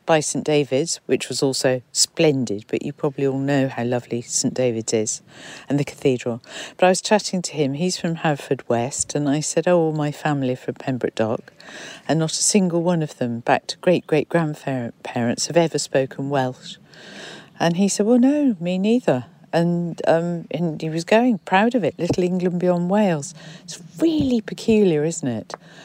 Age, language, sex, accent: 50-69, English, female, British